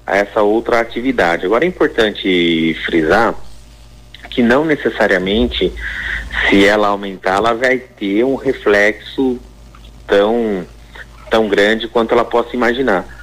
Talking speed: 120 wpm